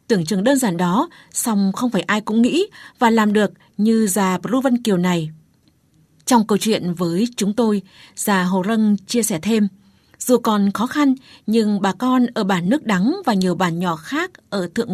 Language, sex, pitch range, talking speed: Vietnamese, female, 190-235 Hz, 195 wpm